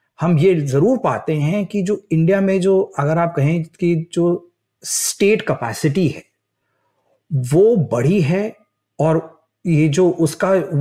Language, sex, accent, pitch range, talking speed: Hindi, male, native, 135-175 Hz, 140 wpm